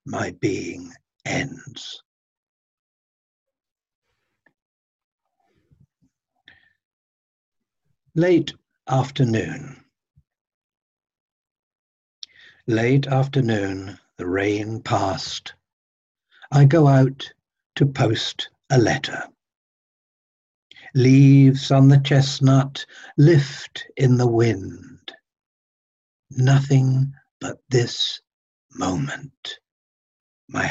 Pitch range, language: 120-140 Hz, English